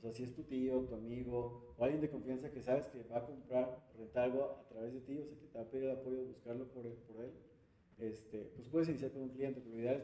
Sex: male